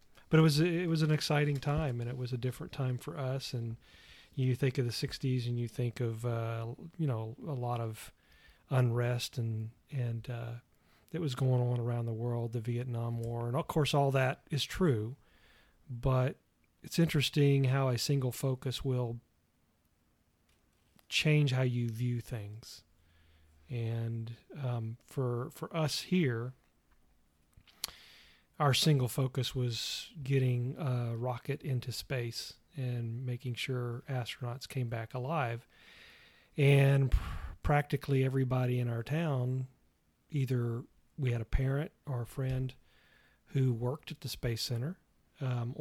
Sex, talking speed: male, 145 wpm